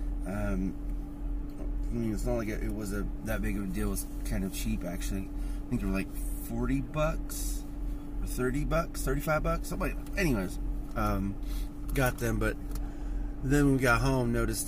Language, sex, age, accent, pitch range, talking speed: English, male, 30-49, American, 105-145 Hz, 190 wpm